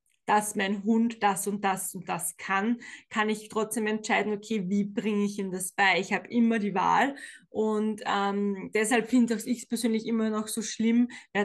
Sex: female